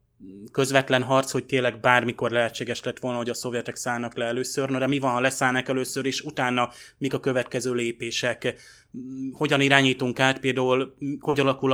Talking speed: 165 wpm